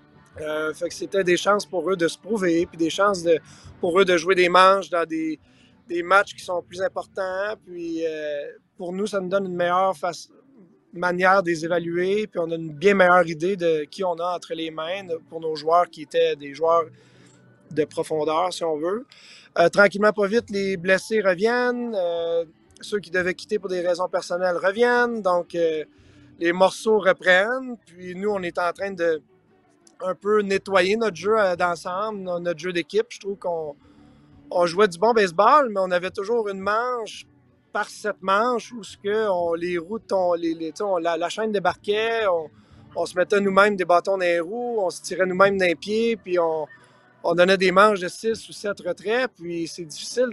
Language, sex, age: French, male, 30-49